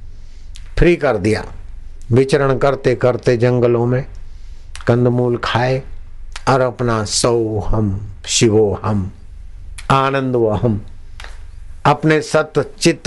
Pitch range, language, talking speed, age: 90-145 Hz, Hindi, 95 wpm, 60-79